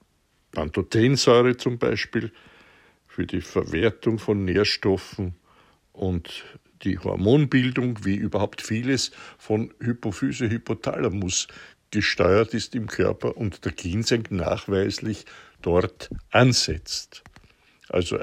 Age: 60-79